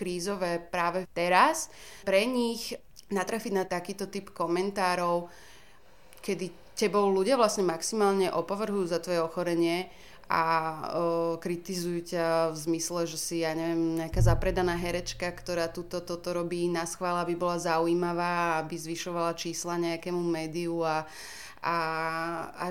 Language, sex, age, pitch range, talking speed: Slovak, female, 30-49, 170-190 Hz, 125 wpm